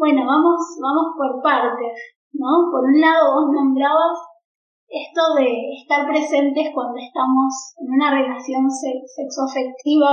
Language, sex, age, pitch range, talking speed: Spanish, female, 10-29, 265-320 Hz, 125 wpm